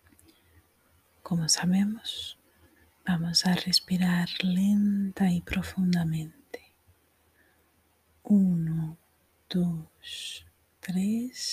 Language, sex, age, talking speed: Spanish, female, 30-49, 55 wpm